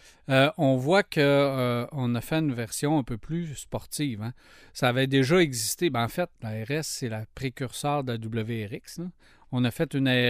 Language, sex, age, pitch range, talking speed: French, male, 40-59, 125-155 Hz, 200 wpm